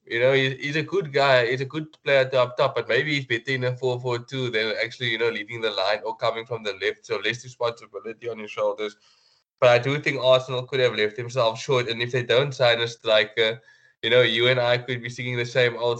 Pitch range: 115-135 Hz